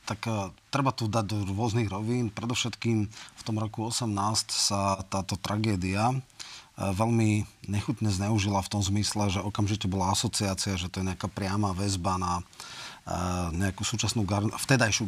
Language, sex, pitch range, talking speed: Slovak, male, 100-115 Hz, 155 wpm